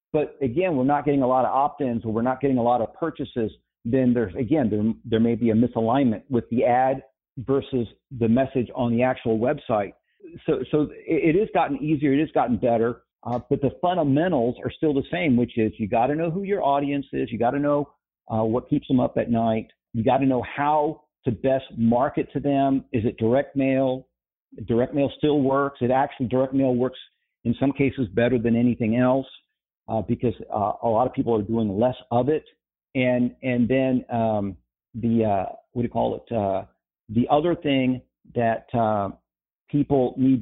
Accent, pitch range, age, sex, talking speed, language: American, 115-140 Hz, 50-69, male, 200 wpm, English